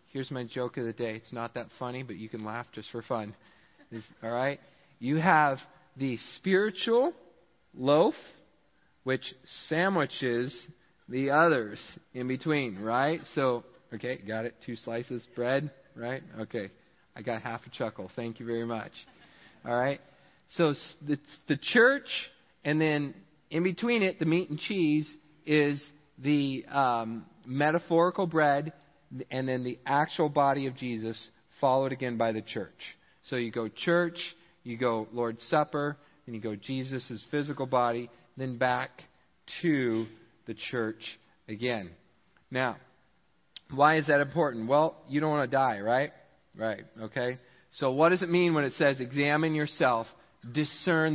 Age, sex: 40-59, male